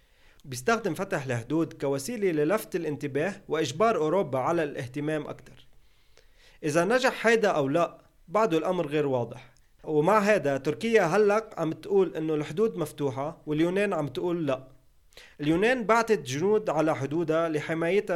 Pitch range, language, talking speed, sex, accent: 145-185 Hz, English, 130 wpm, male, Lebanese